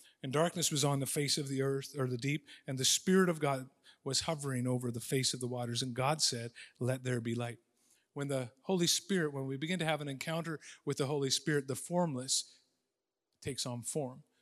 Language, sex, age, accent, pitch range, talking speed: English, male, 50-69, American, 130-150 Hz, 215 wpm